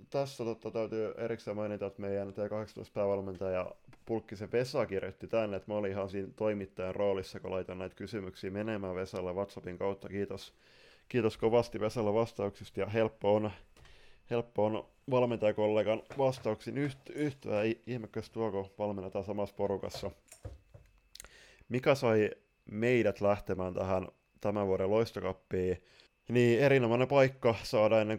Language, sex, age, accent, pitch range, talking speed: Finnish, male, 20-39, native, 95-110 Hz, 130 wpm